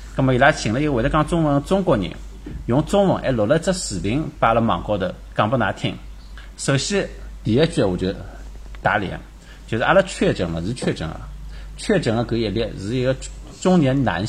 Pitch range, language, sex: 95-140 Hz, Chinese, male